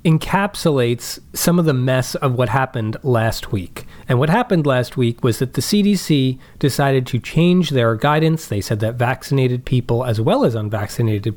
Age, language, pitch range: 40-59, English, 115-145 Hz